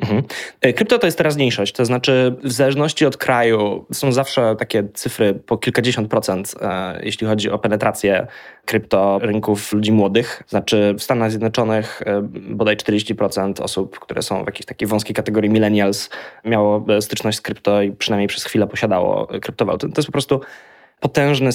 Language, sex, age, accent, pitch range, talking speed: Polish, male, 20-39, native, 105-120 Hz, 165 wpm